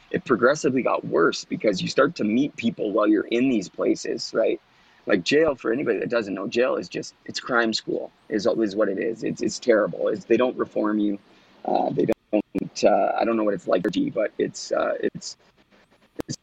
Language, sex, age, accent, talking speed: English, male, 30-49, American, 210 wpm